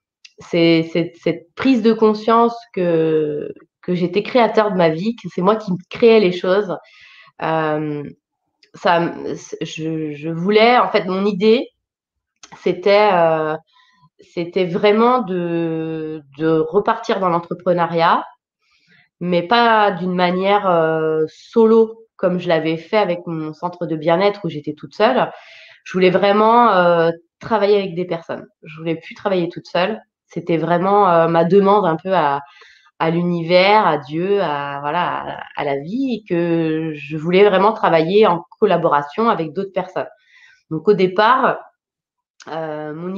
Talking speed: 145 wpm